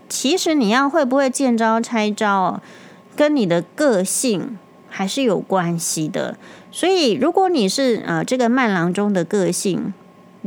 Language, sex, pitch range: Chinese, female, 185-245 Hz